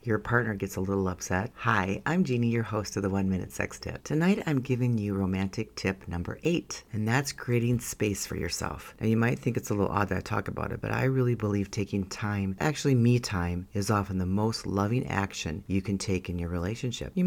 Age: 40-59